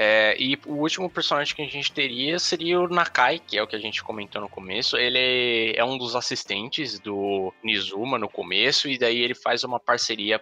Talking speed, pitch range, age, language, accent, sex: 200 wpm, 110-140 Hz, 10-29, Portuguese, Brazilian, male